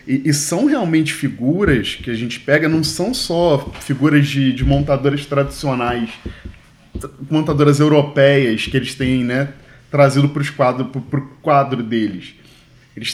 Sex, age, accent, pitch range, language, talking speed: male, 10-29, Brazilian, 120-150 Hz, Portuguese, 130 wpm